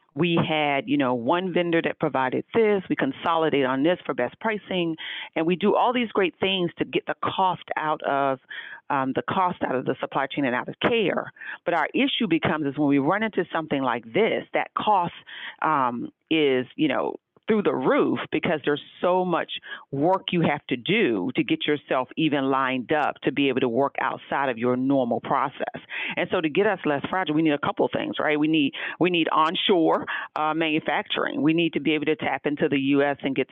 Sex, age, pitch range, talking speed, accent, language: female, 40-59, 140-175 Hz, 215 wpm, American, English